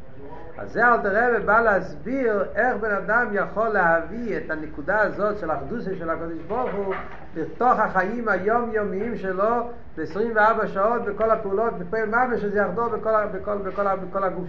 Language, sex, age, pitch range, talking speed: Hebrew, male, 50-69, 165-220 Hz, 160 wpm